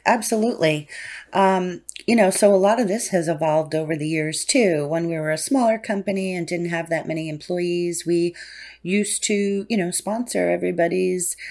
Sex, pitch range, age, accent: female, 150-185 Hz, 40-59, American